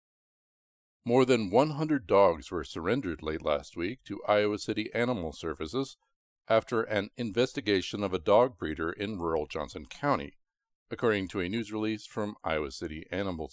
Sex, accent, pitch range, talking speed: male, American, 95-125 Hz, 150 wpm